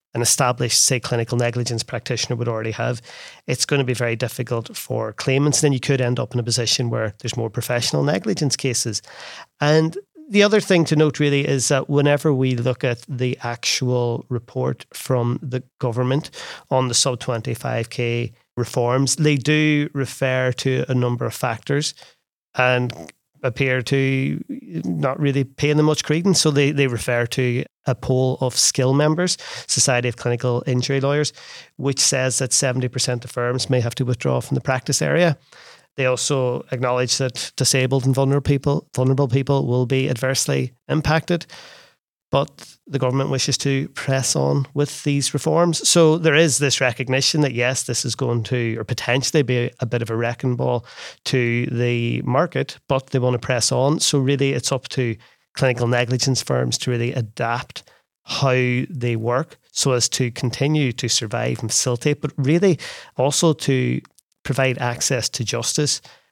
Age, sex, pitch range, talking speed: 30-49, male, 120-140 Hz, 165 wpm